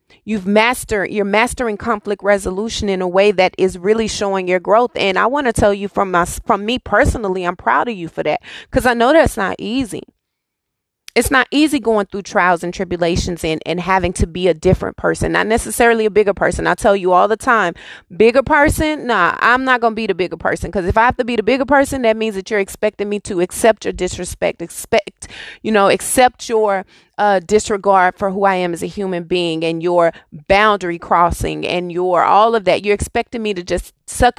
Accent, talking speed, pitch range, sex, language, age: American, 215 wpm, 185-225 Hz, female, English, 30-49